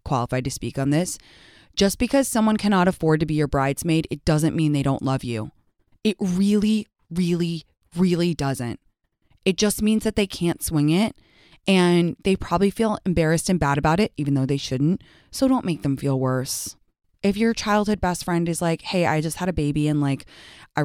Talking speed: 200 wpm